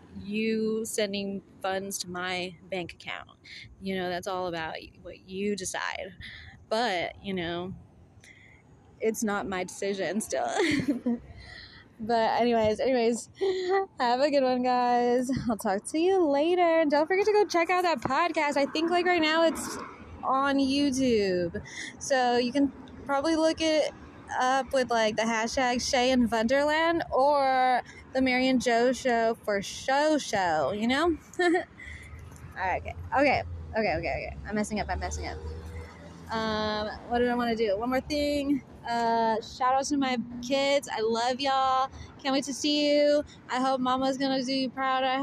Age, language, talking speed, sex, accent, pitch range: 20-39, English, 160 wpm, female, American, 215-275 Hz